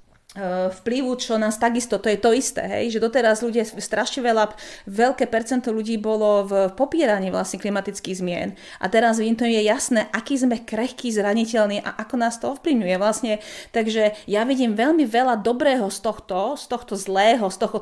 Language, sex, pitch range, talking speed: Slovak, female, 205-250 Hz, 175 wpm